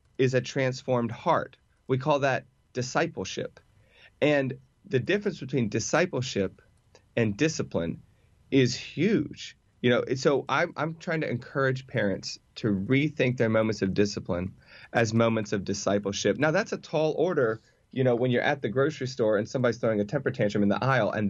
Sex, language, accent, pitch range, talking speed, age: male, English, American, 105-130 Hz, 175 wpm, 30-49